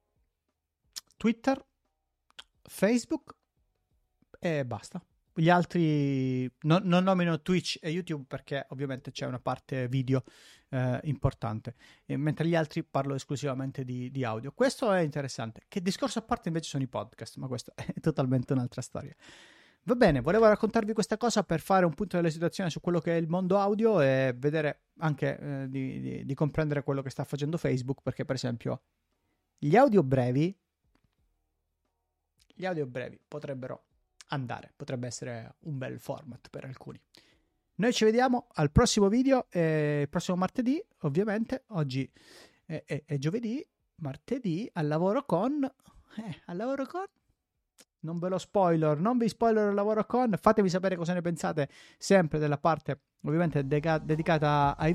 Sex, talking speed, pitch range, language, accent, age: male, 155 wpm, 135-195 Hz, Italian, native, 30-49